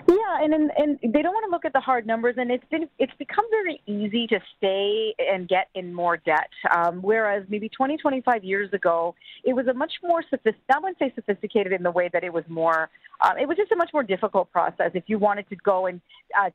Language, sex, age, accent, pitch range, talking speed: English, female, 40-59, American, 185-235 Hz, 245 wpm